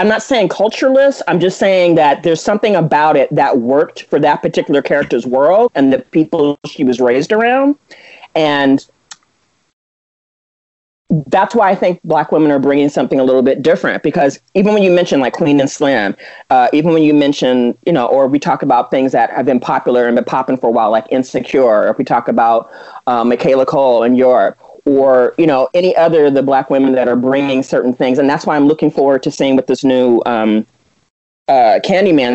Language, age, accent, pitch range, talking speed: English, 40-59, American, 130-190 Hz, 205 wpm